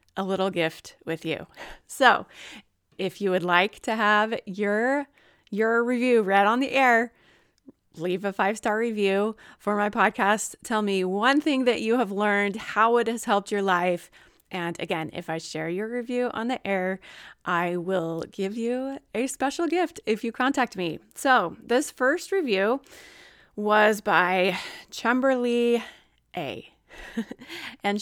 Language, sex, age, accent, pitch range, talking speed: English, female, 30-49, American, 190-245 Hz, 150 wpm